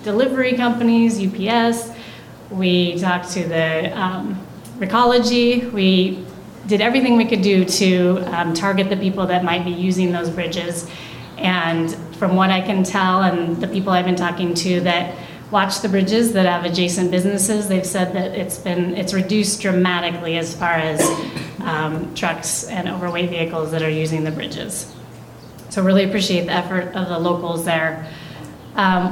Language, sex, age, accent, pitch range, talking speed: English, female, 30-49, American, 175-200 Hz, 160 wpm